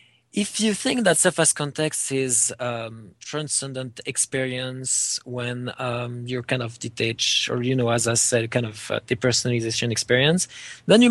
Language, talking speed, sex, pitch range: English, 155 wpm, male, 115-150 Hz